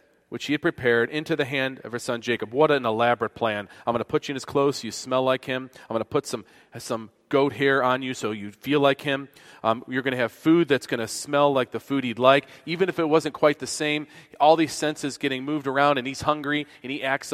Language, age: English, 40-59